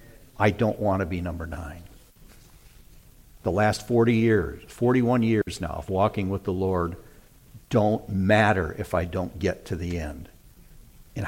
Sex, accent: male, American